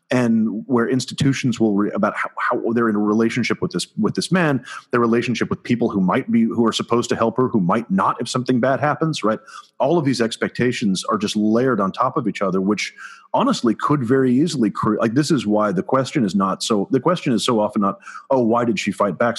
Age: 30-49